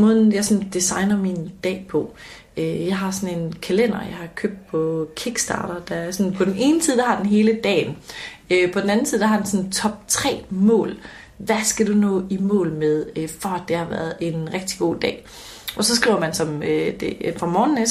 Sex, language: female, Danish